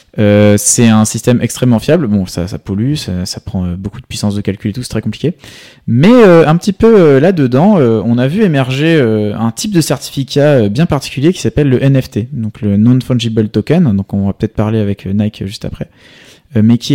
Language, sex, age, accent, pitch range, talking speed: French, male, 20-39, French, 105-140 Hz, 230 wpm